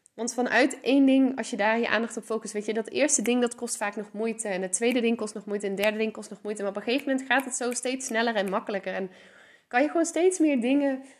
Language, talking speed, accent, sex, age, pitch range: Dutch, 290 wpm, Dutch, female, 20-39, 210-270 Hz